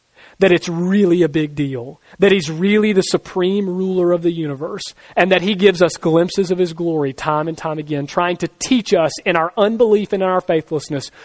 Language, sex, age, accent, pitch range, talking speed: English, male, 40-59, American, 150-185 Hz, 210 wpm